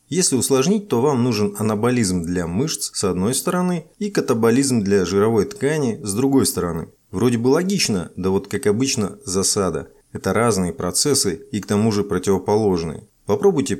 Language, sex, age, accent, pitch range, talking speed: Russian, male, 30-49, native, 100-140 Hz, 155 wpm